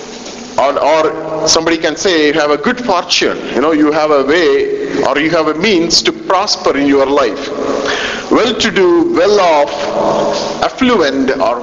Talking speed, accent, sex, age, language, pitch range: 155 wpm, Indian, male, 50-69, English, 145-235 Hz